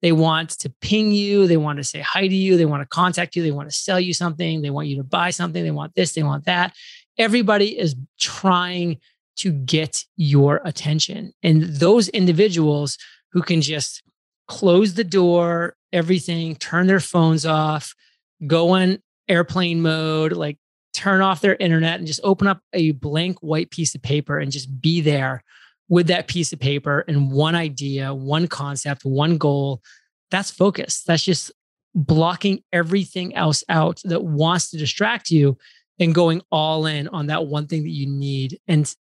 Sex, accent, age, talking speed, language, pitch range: male, American, 30-49, 180 wpm, English, 150-180 Hz